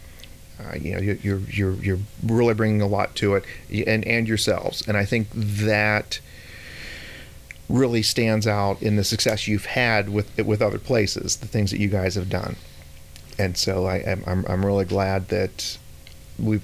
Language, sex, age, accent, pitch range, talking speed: English, male, 40-59, American, 90-105 Hz, 170 wpm